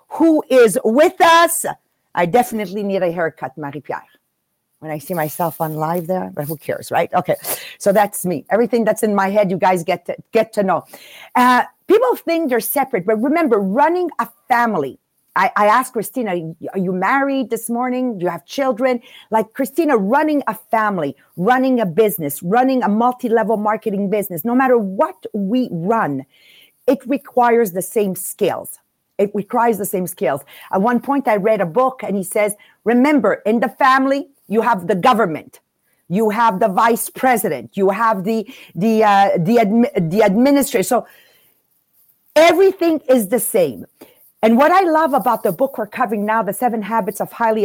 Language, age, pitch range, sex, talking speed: English, 50-69, 200-260 Hz, female, 175 wpm